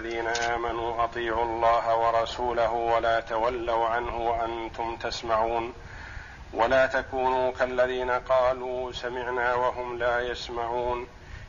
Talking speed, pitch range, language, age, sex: 95 wpm, 120-145 Hz, Arabic, 50-69, male